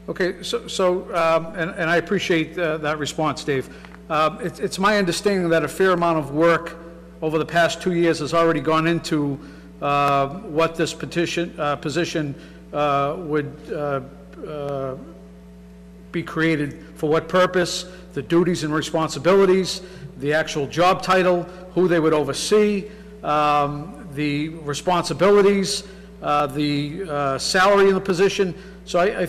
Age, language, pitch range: 50-69, English, 150-180 Hz